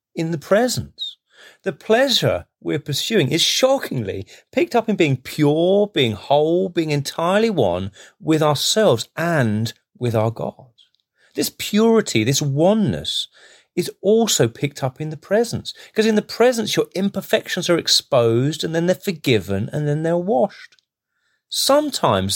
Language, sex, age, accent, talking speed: English, male, 40-59, British, 140 wpm